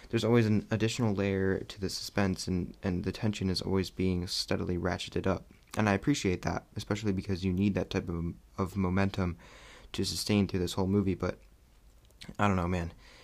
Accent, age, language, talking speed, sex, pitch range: American, 20-39, English, 190 wpm, male, 95-115 Hz